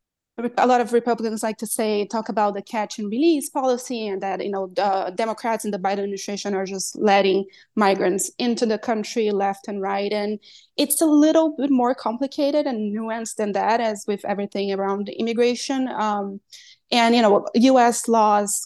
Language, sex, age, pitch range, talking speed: English, female, 20-39, 200-230 Hz, 175 wpm